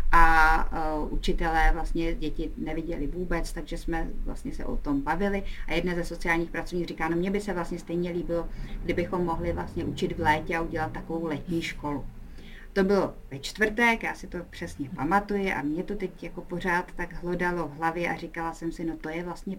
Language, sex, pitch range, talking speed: Czech, female, 165-180 Hz, 195 wpm